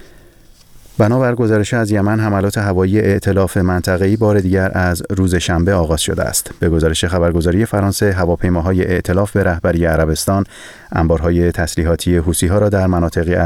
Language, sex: Persian, male